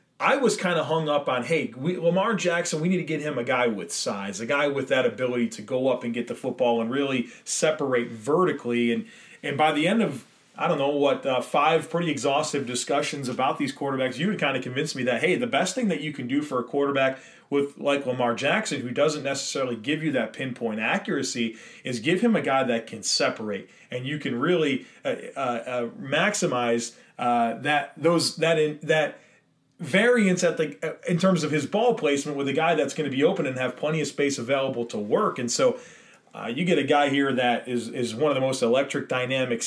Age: 30-49